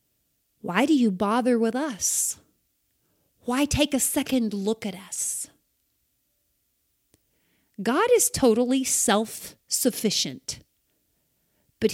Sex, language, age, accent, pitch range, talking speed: female, English, 40-59, American, 230-305 Hz, 90 wpm